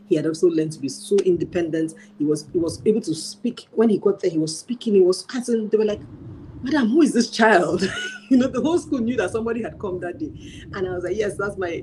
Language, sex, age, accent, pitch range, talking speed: English, female, 40-59, Nigerian, 175-230 Hz, 265 wpm